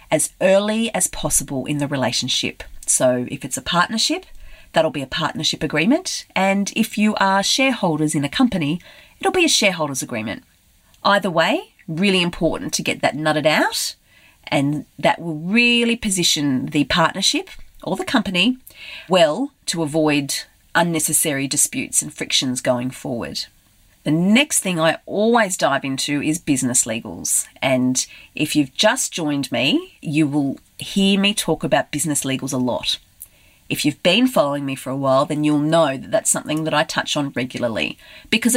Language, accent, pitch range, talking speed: English, Australian, 140-215 Hz, 160 wpm